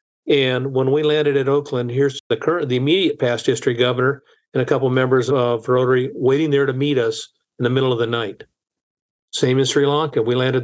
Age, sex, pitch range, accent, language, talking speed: 50-69, male, 125-150 Hz, American, English, 210 wpm